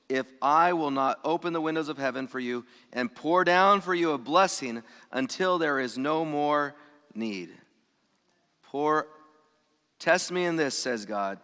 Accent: American